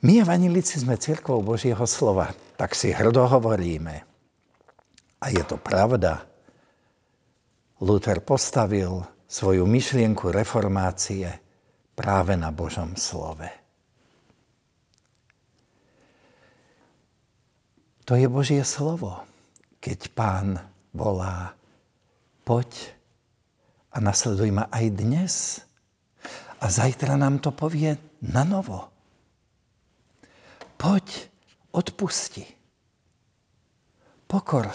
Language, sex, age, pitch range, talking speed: Slovak, male, 60-79, 105-155 Hz, 80 wpm